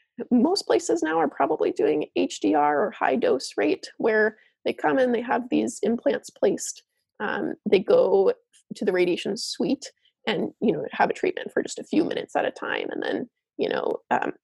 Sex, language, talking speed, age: female, English, 190 wpm, 20-39